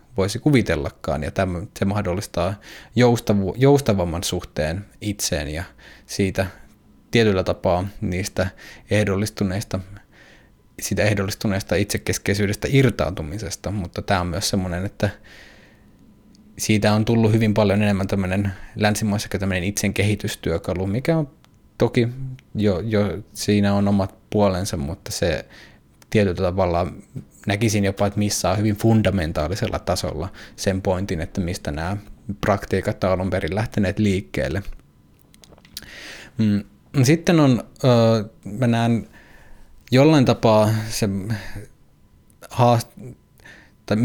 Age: 20-39